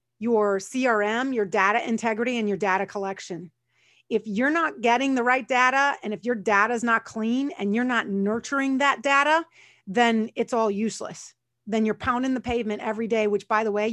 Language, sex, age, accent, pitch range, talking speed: English, female, 30-49, American, 210-255 Hz, 190 wpm